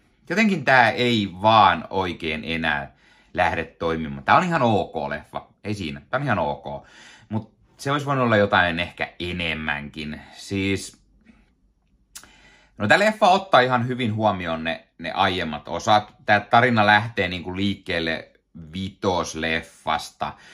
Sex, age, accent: male, 30-49, native